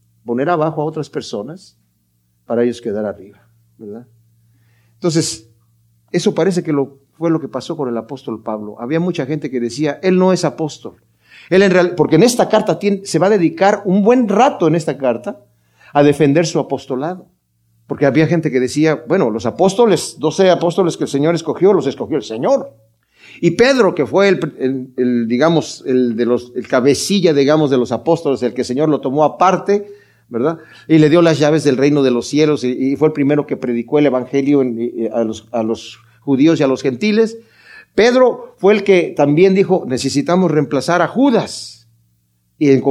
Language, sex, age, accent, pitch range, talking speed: Spanish, male, 50-69, Mexican, 120-180 Hz, 190 wpm